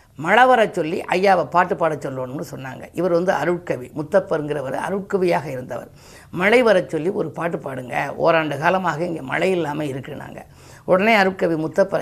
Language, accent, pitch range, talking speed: Tamil, native, 160-200 Hz, 140 wpm